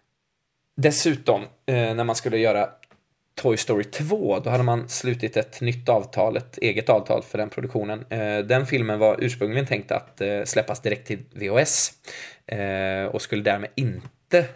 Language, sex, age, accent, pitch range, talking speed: Swedish, male, 20-39, native, 100-130 Hz, 145 wpm